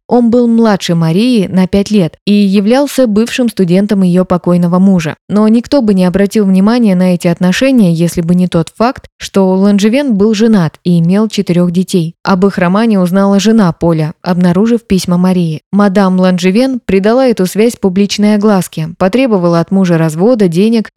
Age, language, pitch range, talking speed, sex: 20-39, Russian, 175-215 Hz, 165 wpm, female